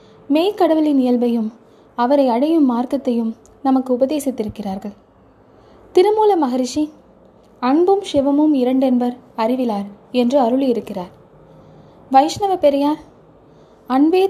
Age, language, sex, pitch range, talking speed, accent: 20-39, Tamil, female, 235-300 Hz, 80 wpm, native